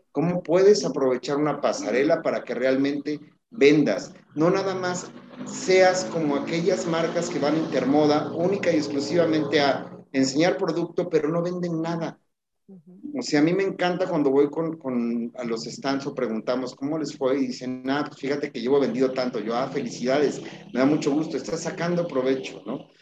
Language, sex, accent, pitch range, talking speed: Spanish, male, Mexican, 140-180 Hz, 175 wpm